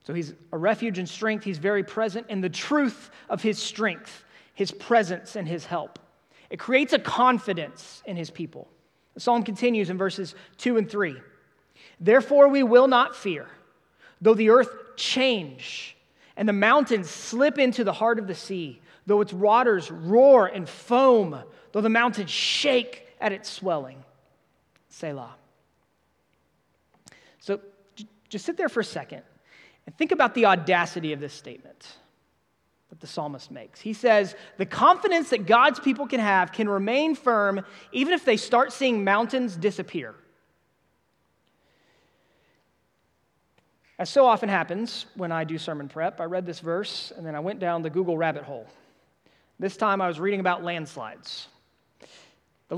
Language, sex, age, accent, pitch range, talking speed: English, male, 30-49, American, 180-245 Hz, 155 wpm